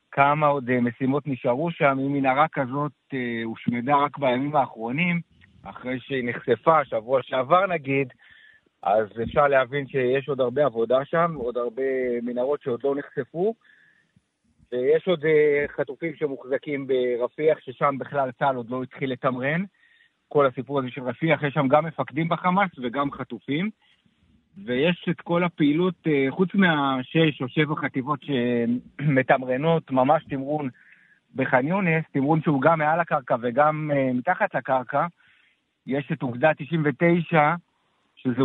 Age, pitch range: 50-69, 130-165 Hz